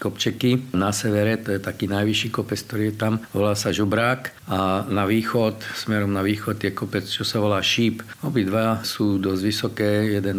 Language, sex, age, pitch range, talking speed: Slovak, male, 50-69, 100-115 Hz, 180 wpm